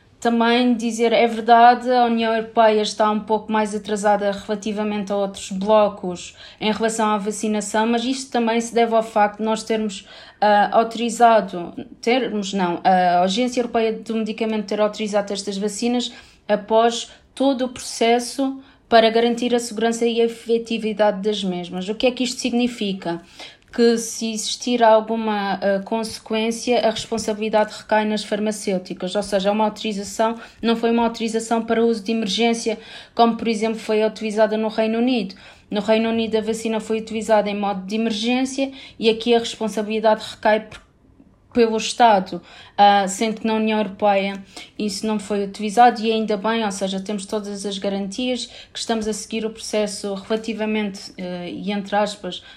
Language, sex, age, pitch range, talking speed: Portuguese, female, 20-39, 205-230 Hz, 160 wpm